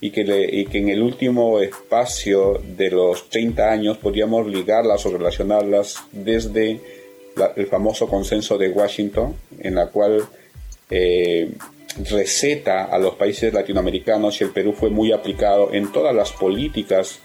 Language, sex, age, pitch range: Spanish, male, 40-59, 100-115 Hz